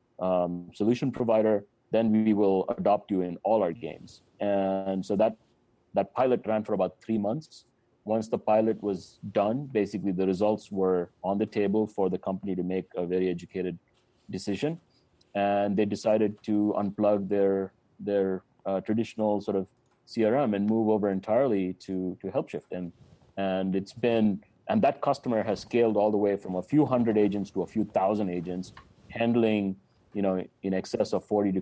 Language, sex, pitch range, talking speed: English, male, 95-110 Hz, 175 wpm